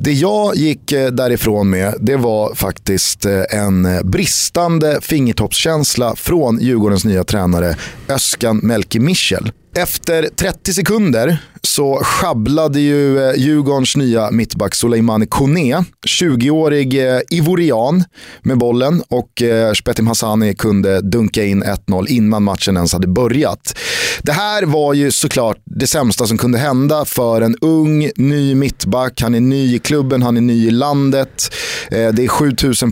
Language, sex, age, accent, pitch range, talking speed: Swedish, male, 30-49, native, 110-155 Hz, 135 wpm